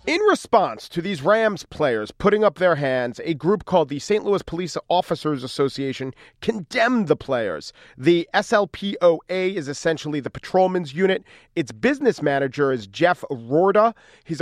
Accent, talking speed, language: American, 150 wpm, English